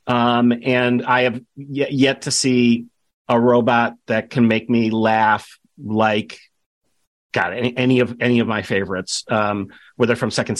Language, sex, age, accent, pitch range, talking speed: English, male, 40-59, American, 120-145 Hz, 160 wpm